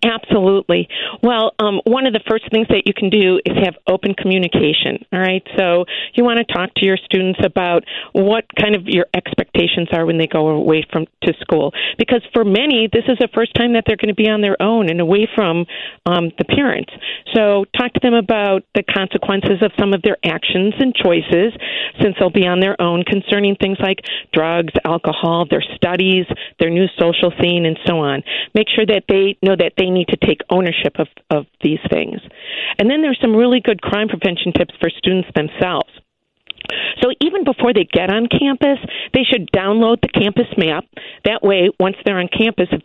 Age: 50-69